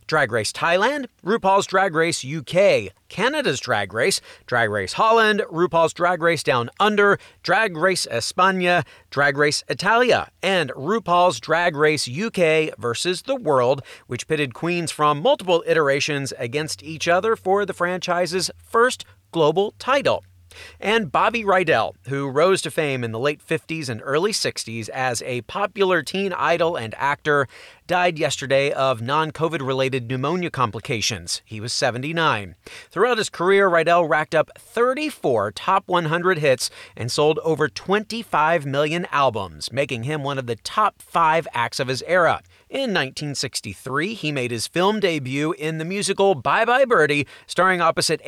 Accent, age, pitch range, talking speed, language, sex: American, 40-59, 140-185 Hz, 150 wpm, English, male